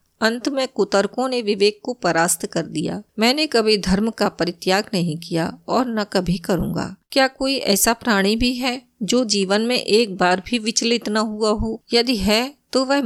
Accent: native